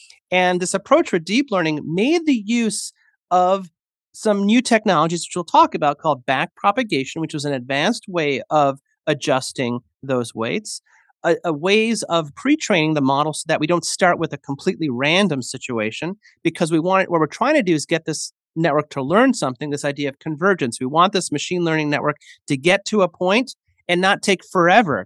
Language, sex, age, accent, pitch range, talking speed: English, male, 30-49, American, 145-200 Hz, 190 wpm